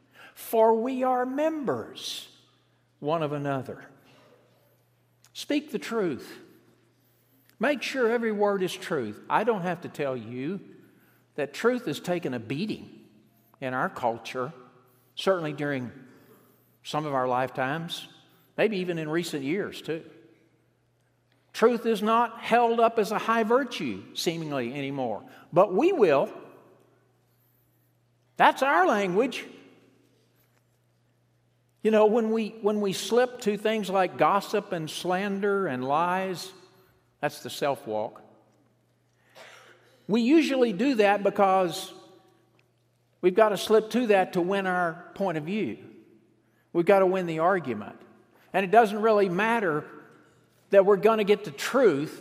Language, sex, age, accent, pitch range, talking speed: English, male, 60-79, American, 130-210 Hz, 130 wpm